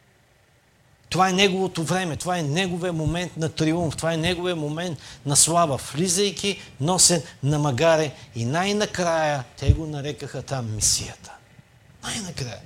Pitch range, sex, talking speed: 130-175 Hz, male, 135 wpm